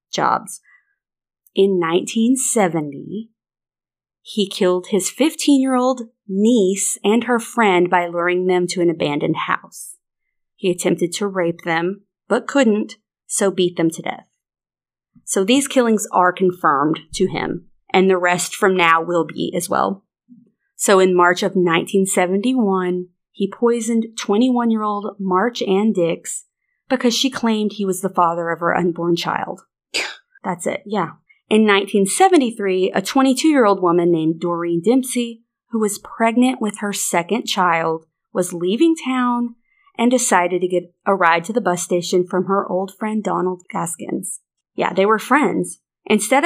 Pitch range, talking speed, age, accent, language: 175-230 Hz, 145 wpm, 30-49, American, English